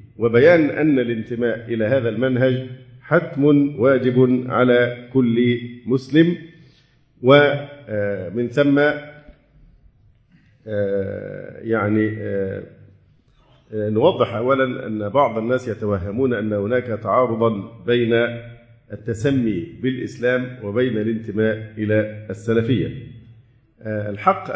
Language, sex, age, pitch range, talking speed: Arabic, male, 50-69, 110-130 Hz, 75 wpm